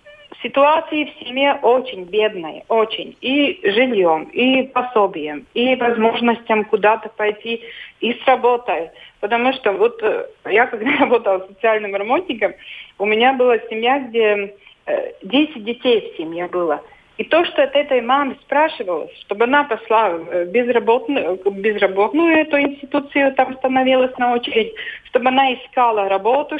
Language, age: Russian, 30-49